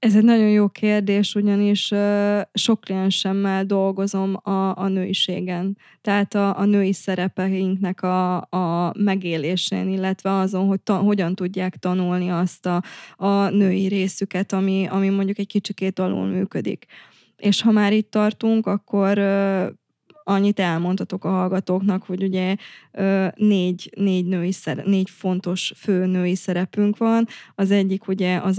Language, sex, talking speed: Hungarian, female, 135 wpm